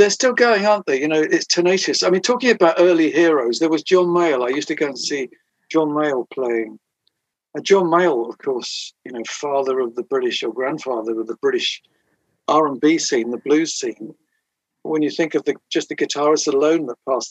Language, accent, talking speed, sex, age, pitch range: English, British, 210 wpm, male, 50-69, 135-170 Hz